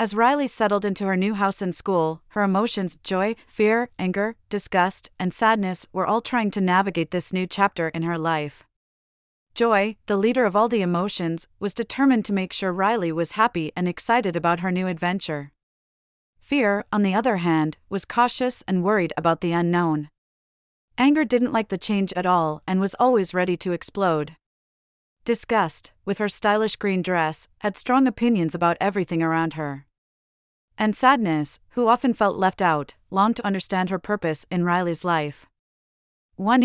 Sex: female